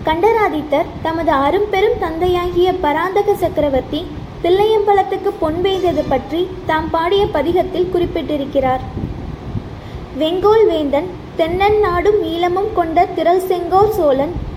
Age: 20-39